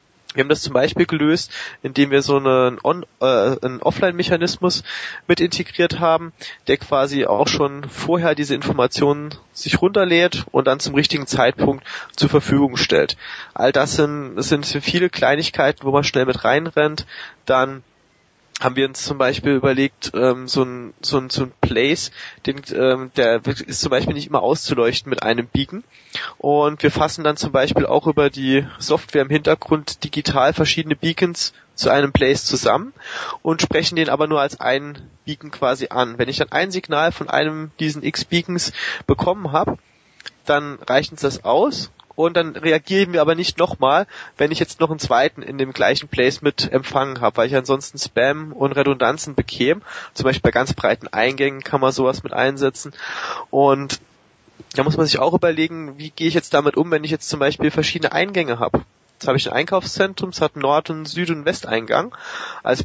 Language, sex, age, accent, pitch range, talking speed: German, male, 20-39, German, 135-160 Hz, 175 wpm